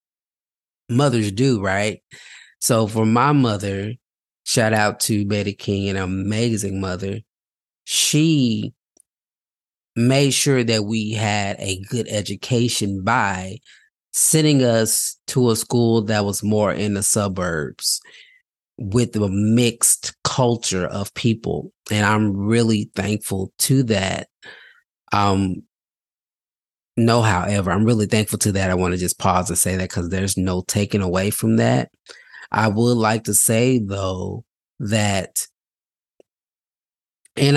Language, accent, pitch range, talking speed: English, American, 100-120 Hz, 125 wpm